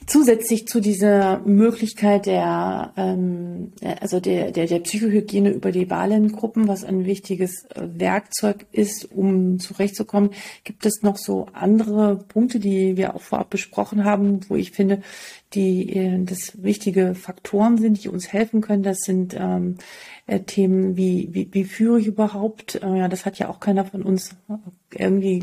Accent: German